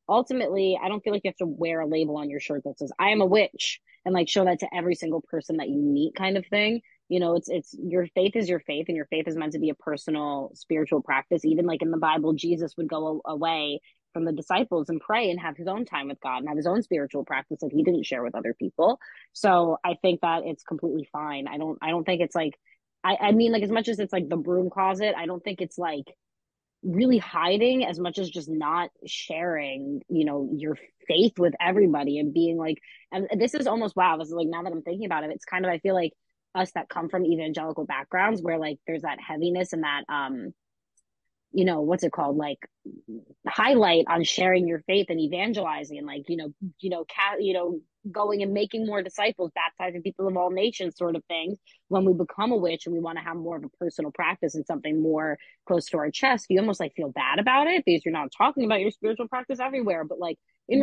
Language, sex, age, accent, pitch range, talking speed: English, female, 20-39, American, 155-195 Hz, 245 wpm